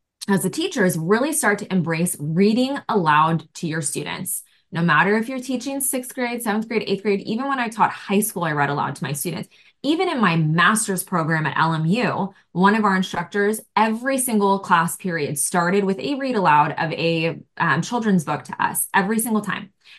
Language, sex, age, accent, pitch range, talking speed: English, female, 20-39, American, 175-210 Hz, 200 wpm